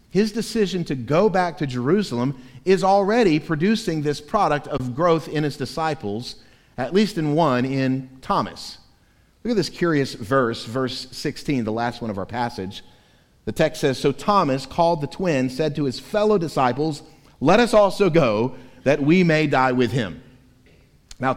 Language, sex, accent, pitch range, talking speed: English, male, American, 120-165 Hz, 170 wpm